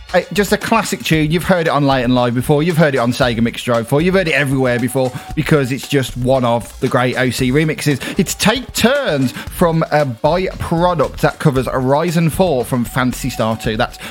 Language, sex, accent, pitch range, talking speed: English, male, British, 130-180 Hz, 210 wpm